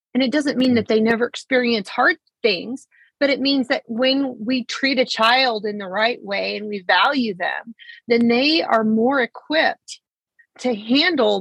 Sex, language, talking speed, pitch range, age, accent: female, English, 180 wpm, 220-270 Hz, 30-49, American